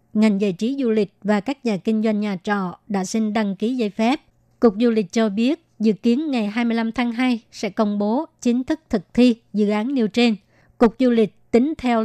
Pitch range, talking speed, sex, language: 210-240 Hz, 225 wpm, male, Vietnamese